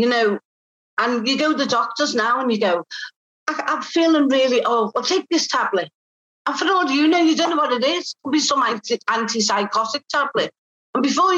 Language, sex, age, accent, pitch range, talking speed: English, female, 50-69, British, 235-305 Hz, 215 wpm